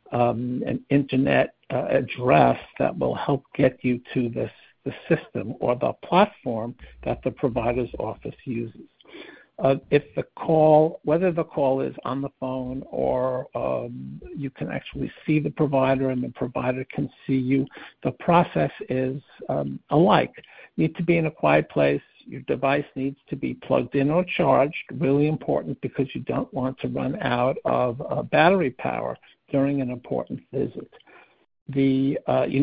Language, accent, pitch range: English, American, 125-145 Hz